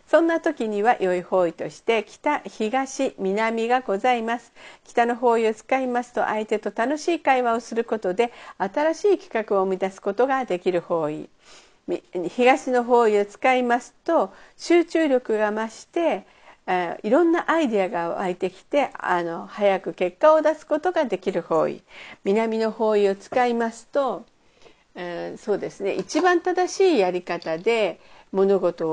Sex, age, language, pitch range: female, 50-69, Japanese, 195-285 Hz